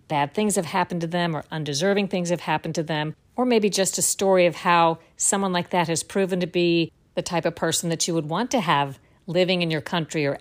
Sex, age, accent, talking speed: female, 50-69, American, 240 wpm